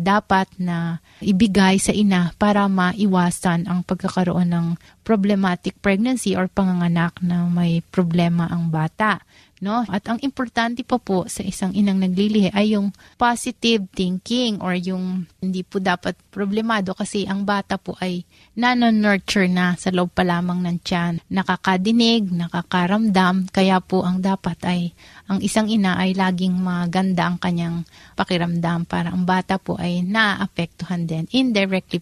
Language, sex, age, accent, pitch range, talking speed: Filipino, female, 30-49, native, 180-205 Hz, 140 wpm